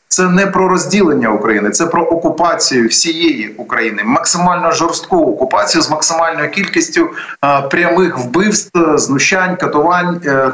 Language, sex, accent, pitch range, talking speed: Ukrainian, male, native, 160-210 Hz, 120 wpm